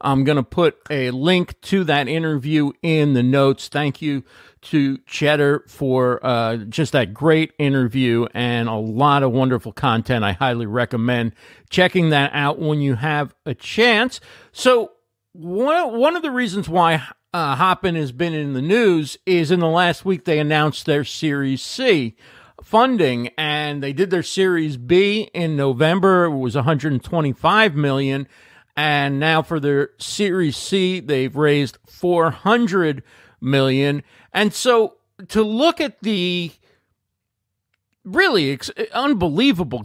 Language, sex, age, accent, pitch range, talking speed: English, male, 50-69, American, 135-185 Hz, 140 wpm